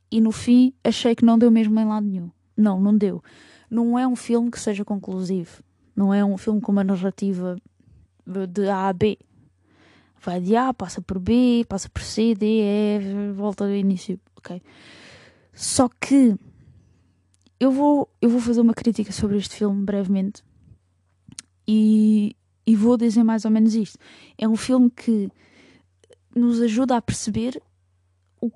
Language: Portuguese